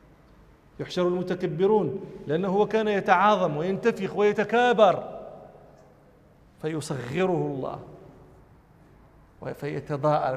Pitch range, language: 155-195 Hz, Arabic